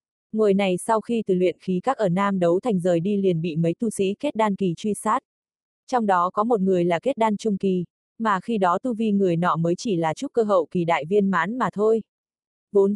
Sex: female